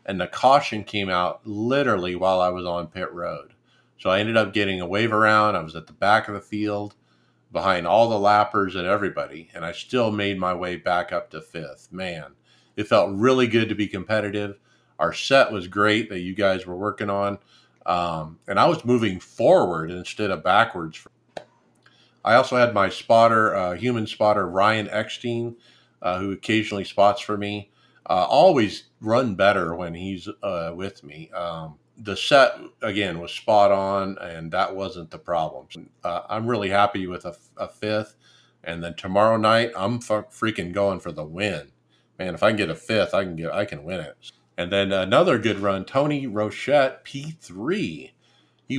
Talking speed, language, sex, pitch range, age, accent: 185 wpm, English, male, 90-110 Hz, 50-69, American